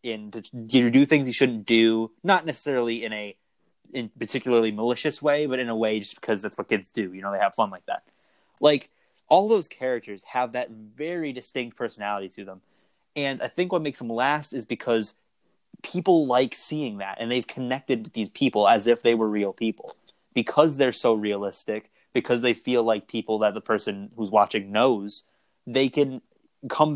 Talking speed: 190 wpm